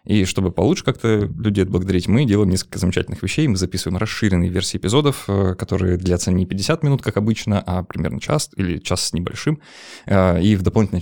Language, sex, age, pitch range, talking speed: Russian, male, 20-39, 90-105 Hz, 180 wpm